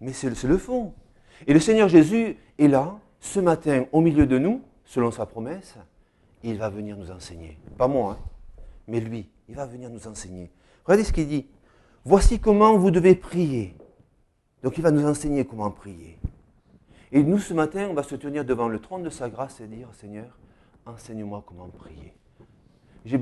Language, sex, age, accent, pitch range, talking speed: French, male, 40-59, French, 100-145 Hz, 185 wpm